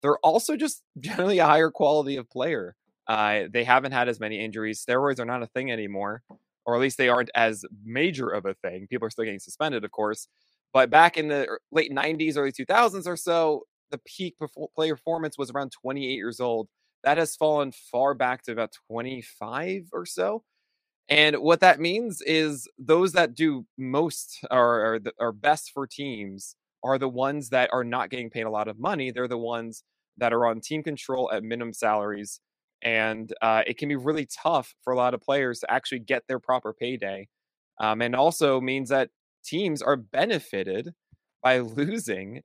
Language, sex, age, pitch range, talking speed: English, male, 20-39, 120-155 Hz, 190 wpm